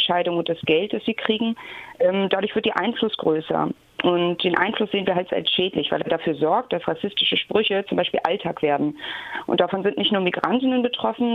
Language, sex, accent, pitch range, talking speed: German, female, German, 180-225 Hz, 200 wpm